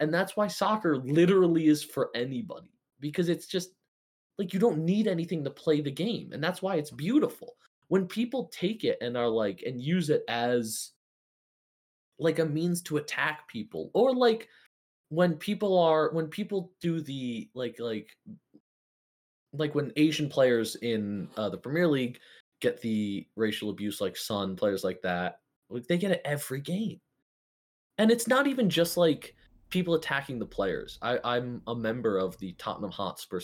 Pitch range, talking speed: 115-180 Hz, 170 wpm